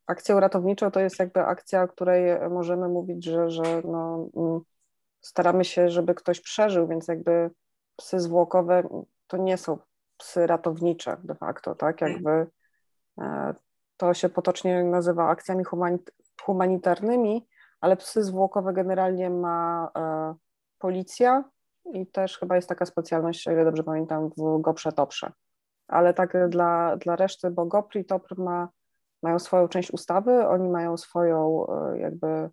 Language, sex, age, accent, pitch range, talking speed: Polish, female, 30-49, native, 170-190 Hz, 135 wpm